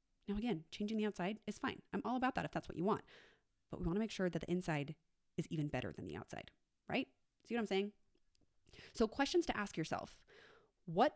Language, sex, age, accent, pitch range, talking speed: English, female, 30-49, American, 160-210 Hz, 225 wpm